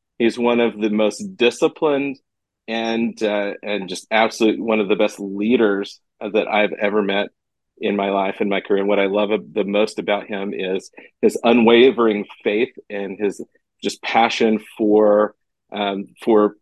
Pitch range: 105-125 Hz